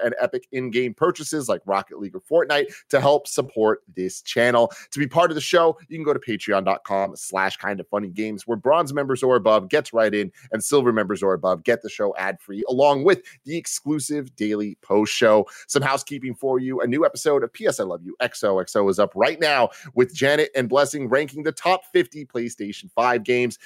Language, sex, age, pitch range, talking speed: English, male, 30-49, 105-145 Hz, 205 wpm